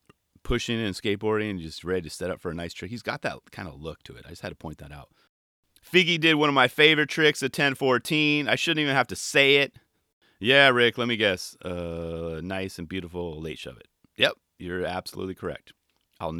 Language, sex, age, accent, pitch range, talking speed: English, male, 30-49, American, 95-160 Hz, 225 wpm